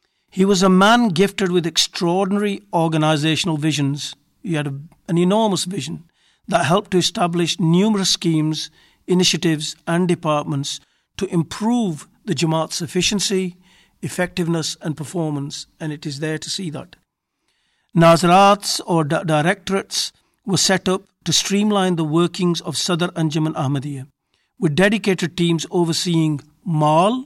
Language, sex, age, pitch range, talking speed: English, male, 50-69, 160-190 Hz, 130 wpm